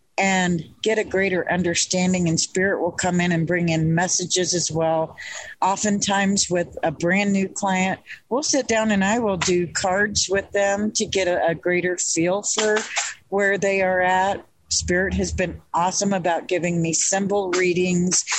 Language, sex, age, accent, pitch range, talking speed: English, female, 50-69, American, 170-205 Hz, 170 wpm